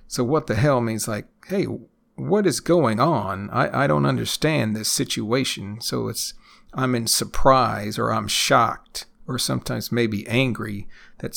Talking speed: 160 wpm